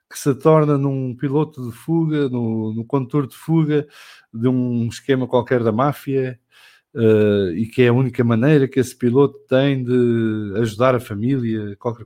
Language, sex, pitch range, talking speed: English, male, 115-145 Hz, 175 wpm